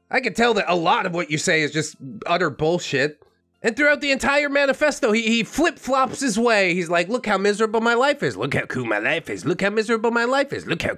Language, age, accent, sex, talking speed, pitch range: English, 30-49, American, male, 250 wpm, 170-230 Hz